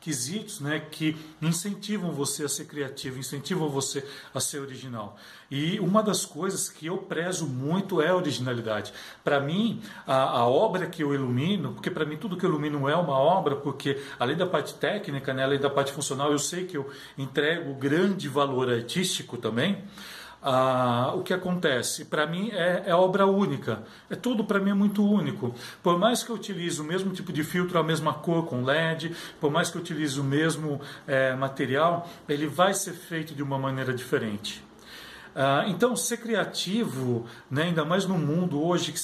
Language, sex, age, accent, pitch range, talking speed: Portuguese, male, 40-59, Brazilian, 140-180 Hz, 185 wpm